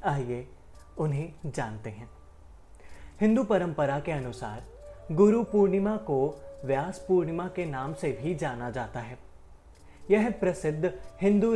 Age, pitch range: 30-49, 130-190 Hz